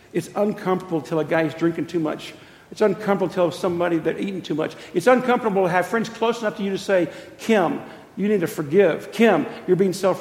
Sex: male